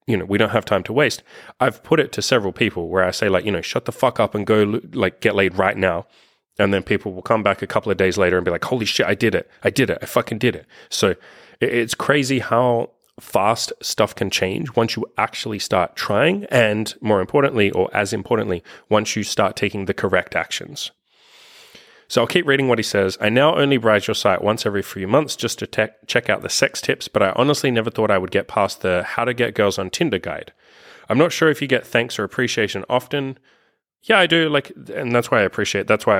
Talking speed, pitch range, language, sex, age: 240 wpm, 95-120 Hz, English, male, 30-49